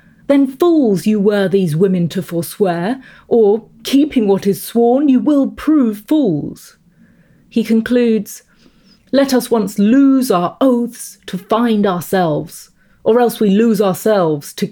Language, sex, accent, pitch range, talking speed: English, female, British, 185-245 Hz, 140 wpm